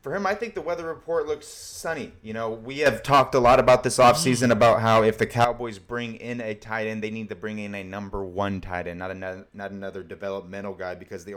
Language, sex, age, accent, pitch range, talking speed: English, male, 30-49, American, 95-110 Hz, 250 wpm